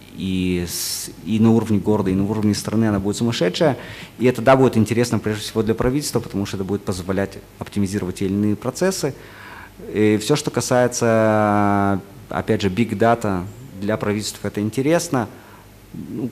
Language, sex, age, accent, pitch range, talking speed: Russian, male, 30-49, native, 95-115 Hz, 160 wpm